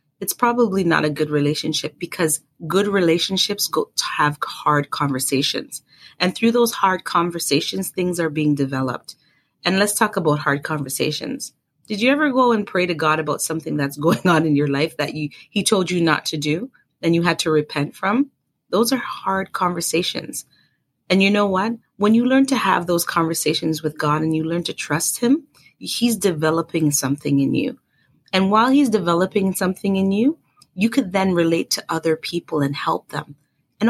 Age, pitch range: 30-49, 155-205 Hz